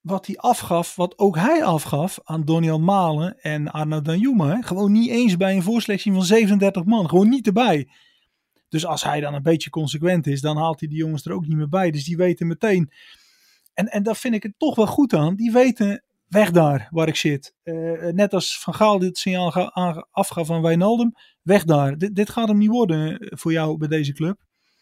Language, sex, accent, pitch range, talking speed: Dutch, male, Dutch, 160-195 Hz, 210 wpm